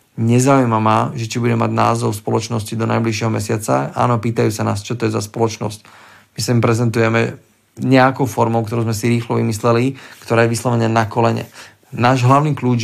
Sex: male